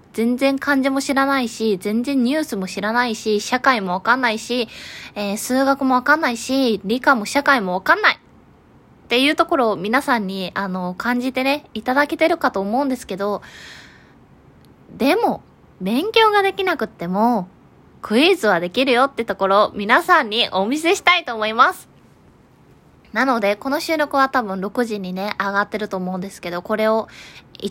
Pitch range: 215-295 Hz